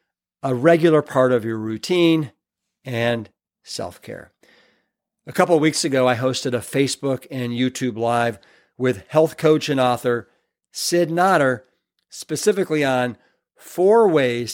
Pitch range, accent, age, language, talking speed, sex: 115-145 Hz, American, 50-69, English, 130 wpm, male